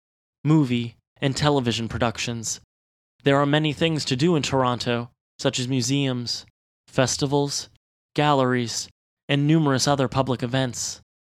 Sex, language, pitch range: male, English, 120-145 Hz